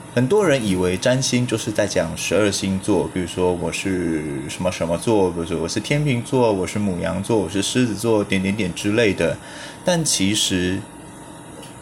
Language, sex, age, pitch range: Chinese, male, 20-39, 90-130 Hz